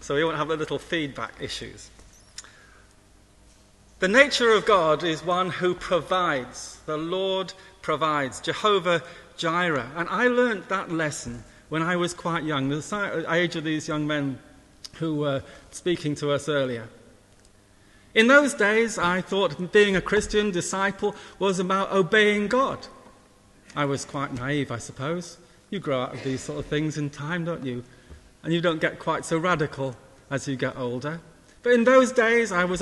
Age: 40-59